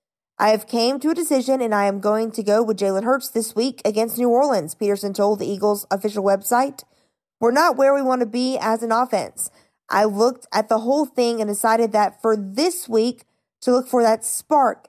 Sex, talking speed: female, 215 wpm